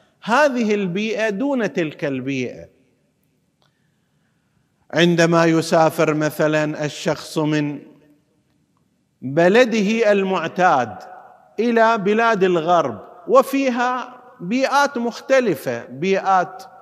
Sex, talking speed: male, 70 wpm